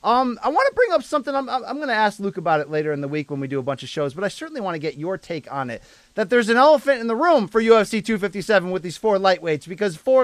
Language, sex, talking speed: English, male, 305 wpm